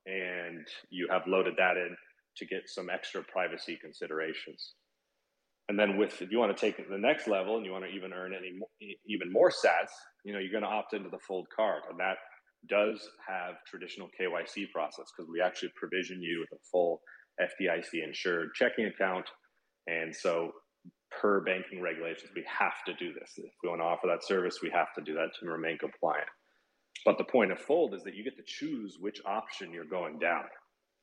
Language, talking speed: English, 205 wpm